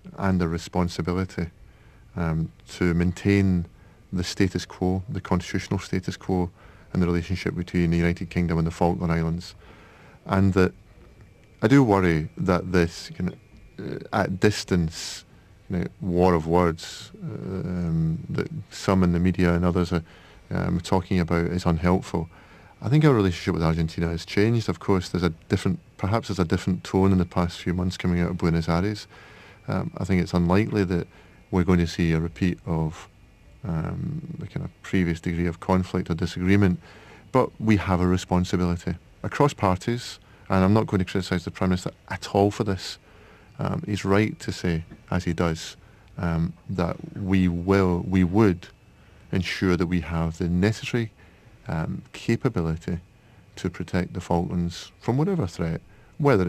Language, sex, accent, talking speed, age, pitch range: English, male, British, 165 wpm, 30-49, 85-100 Hz